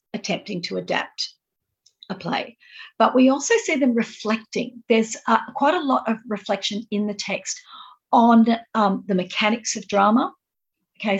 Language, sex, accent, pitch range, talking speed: English, female, Australian, 185-220 Hz, 150 wpm